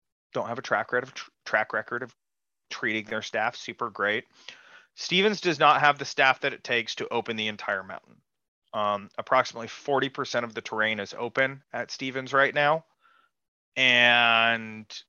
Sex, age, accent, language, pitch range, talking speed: male, 30-49, American, English, 115-140 Hz, 165 wpm